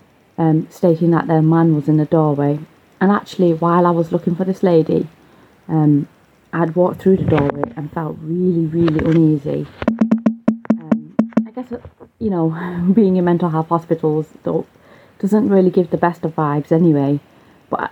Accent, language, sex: British, English, female